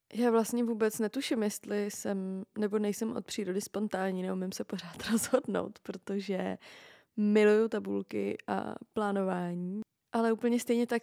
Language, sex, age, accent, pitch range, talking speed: Czech, female, 20-39, native, 200-230 Hz, 130 wpm